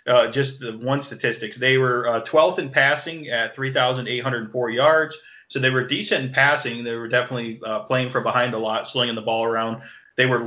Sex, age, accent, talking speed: male, 30-49, American, 200 wpm